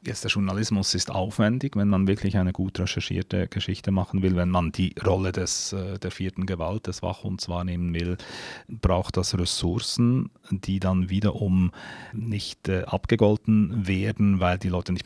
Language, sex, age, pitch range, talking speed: German, male, 40-59, 90-105 Hz, 155 wpm